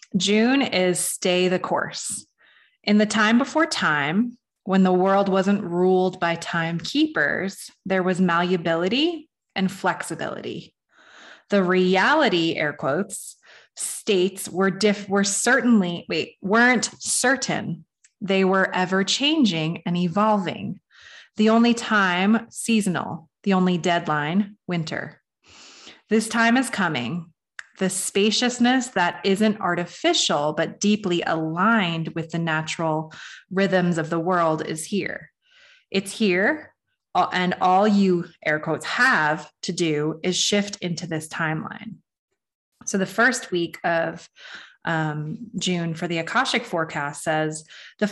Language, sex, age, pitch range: English, female, 20-39, 170-220 Hz